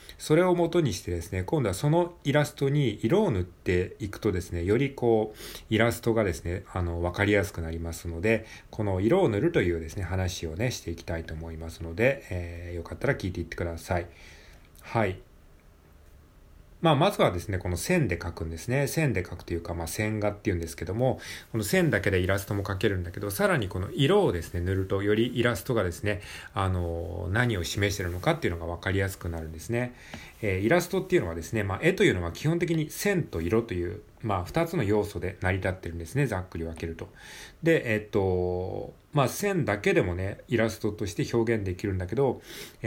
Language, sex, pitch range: Japanese, male, 85-115 Hz